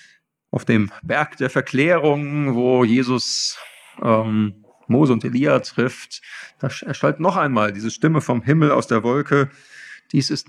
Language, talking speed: German, 145 wpm